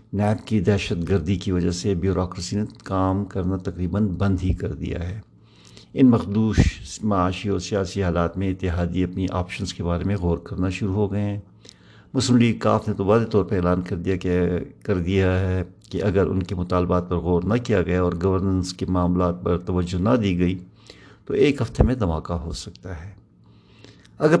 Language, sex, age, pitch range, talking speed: Urdu, male, 50-69, 90-110 Hz, 195 wpm